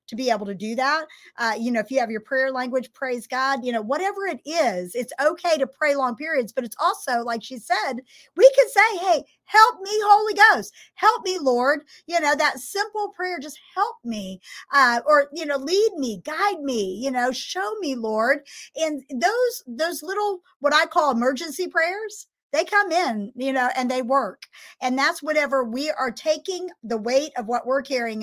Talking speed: 200 wpm